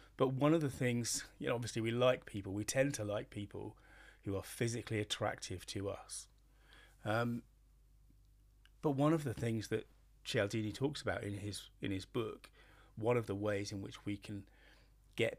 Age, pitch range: 30-49, 100-125 Hz